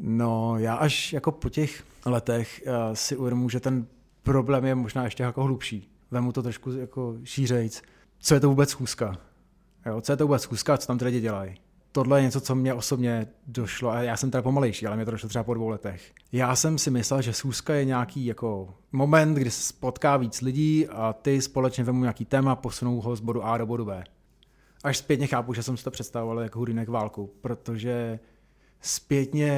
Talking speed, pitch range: 200 wpm, 120-135 Hz